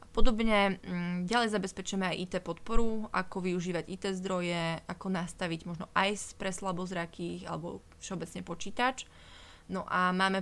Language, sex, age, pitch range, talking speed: Slovak, female, 20-39, 175-200 Hz, 125 wpm